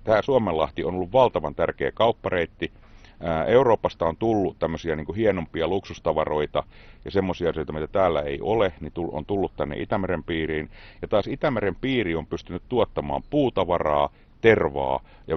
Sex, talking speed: male, 145 wpm